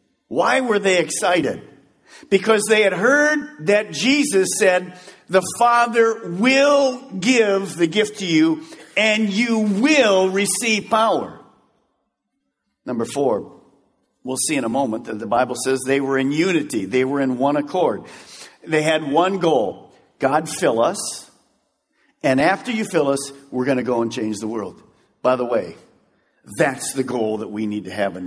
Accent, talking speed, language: American, 160 wpm, English